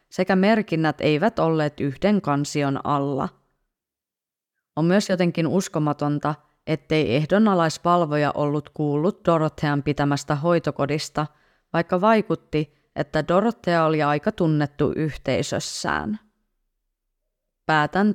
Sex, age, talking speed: female, 30-49, 90 wpm